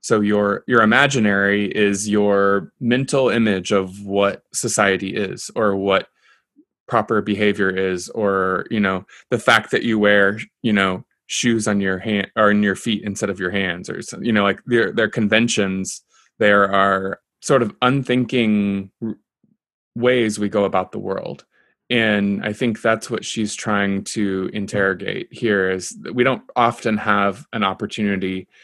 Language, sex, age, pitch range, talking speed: English, male, 20-39, 95-110 Hz, 155 wpm